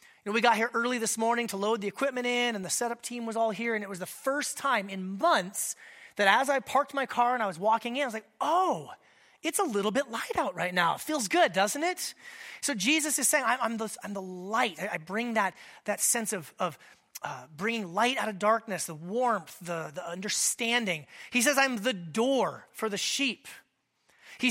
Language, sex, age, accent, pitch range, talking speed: English, male, 30-49, American, 200-255 Hz, 230 wpm